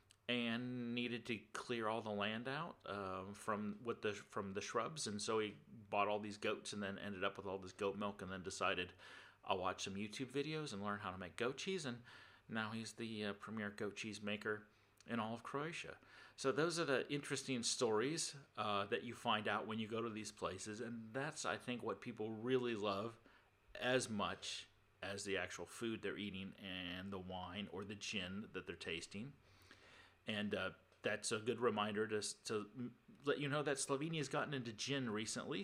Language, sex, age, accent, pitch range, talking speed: English, male, 40-59, American, 100-125 Hz, 200 wpm